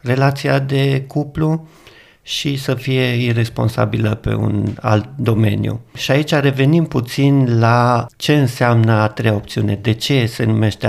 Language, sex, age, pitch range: Romanian, male, 50-69, 110-140 Hz